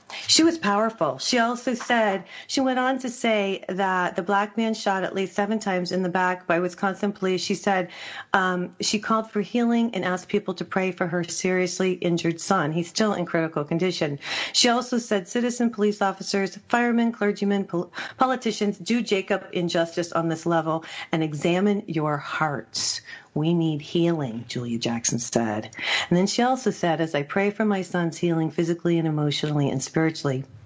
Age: 40-59